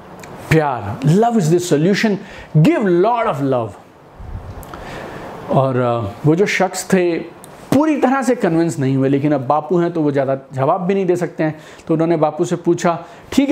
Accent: native